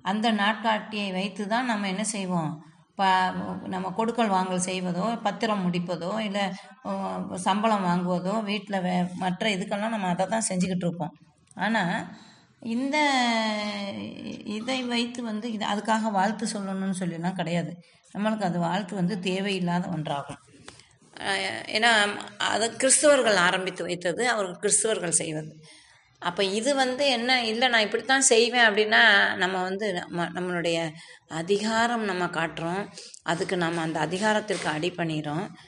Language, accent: Tamil, native